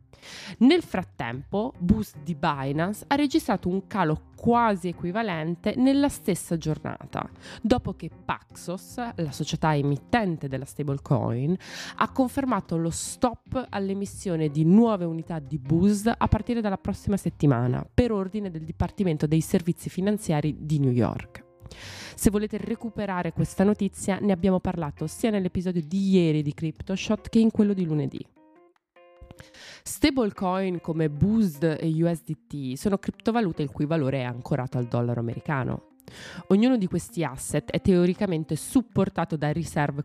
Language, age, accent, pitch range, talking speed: Italian, 20-39, native, 150-200 Hz, 135 wpm